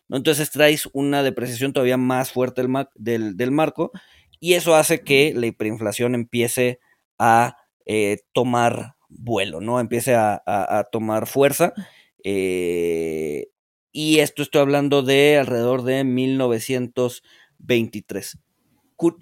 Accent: Mexican